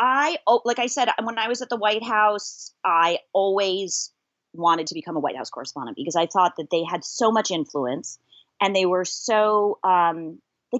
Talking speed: 195 wpm